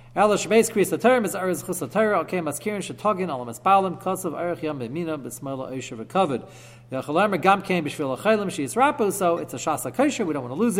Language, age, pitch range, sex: English, 40-59, 130-195 Hz, male